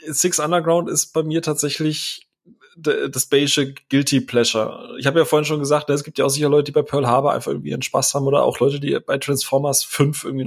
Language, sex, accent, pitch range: German, male, German, 130-150 Hz